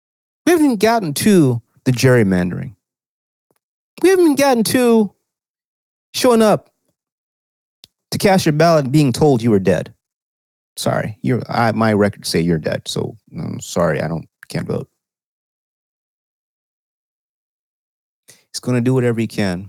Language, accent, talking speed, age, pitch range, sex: English, American, 135 wpm, 30-49, 95-130 Hz, male